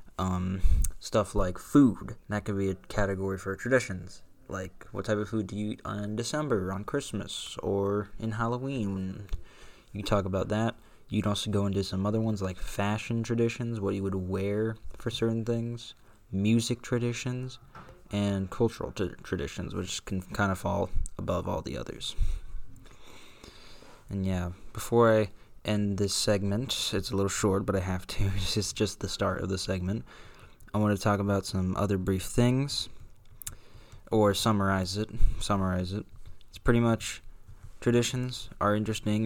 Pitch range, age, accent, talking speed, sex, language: 95-110 Hz, 20-39, American, 155 wpm, male, English